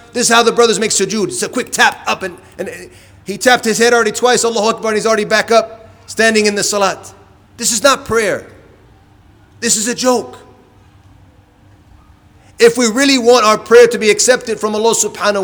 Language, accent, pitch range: English, American, 180-245 Hz